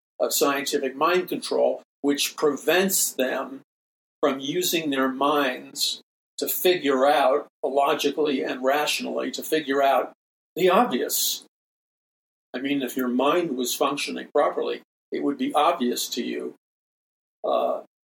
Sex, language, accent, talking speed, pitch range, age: male, English, American, 125 wpm, 130-155 Hz, 50-69